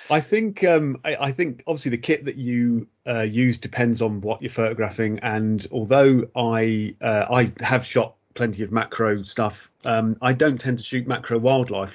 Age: 30-49